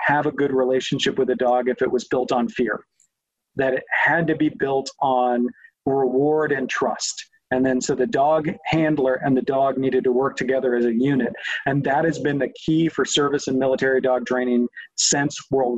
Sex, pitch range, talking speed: male, 125-145 Hz, 200 wpm